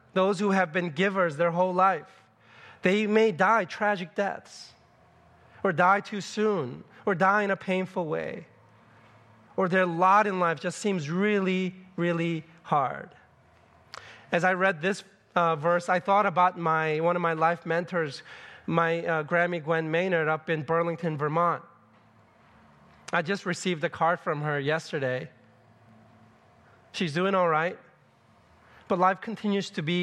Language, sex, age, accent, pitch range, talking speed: English, male, 30-49, American, 150-190 Hz, 150 wpm